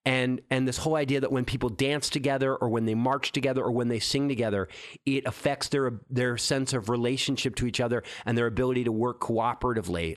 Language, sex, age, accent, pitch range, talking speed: English, male, 30-49, American, 110-140 Hz, 210 wpm